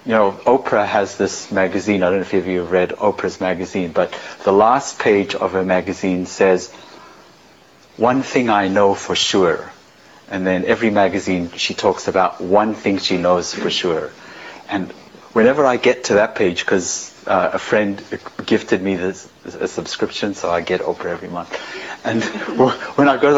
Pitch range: 95-150 Hz